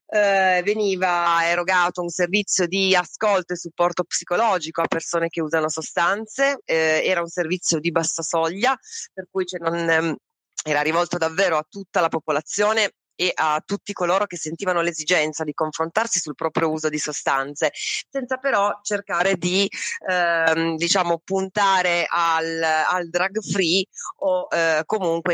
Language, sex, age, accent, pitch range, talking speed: Italian, female, 30-49, native, 150-180 Hz, 145 wpm